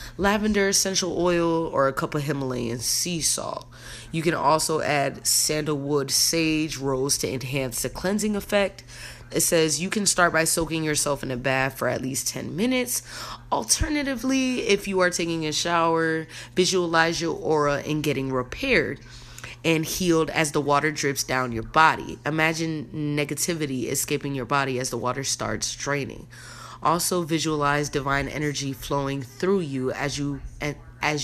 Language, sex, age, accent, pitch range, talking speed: English, female, 20-39, American, 130-170 Hz, 155 wpm